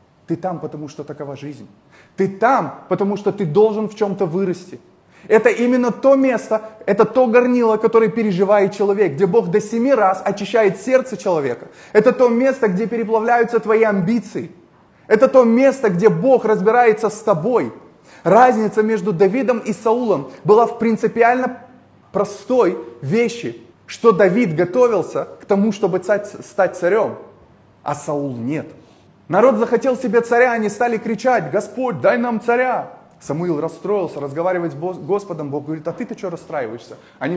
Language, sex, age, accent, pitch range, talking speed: Russian, male, 20-39, native, 165-230 Hz, 150 wpm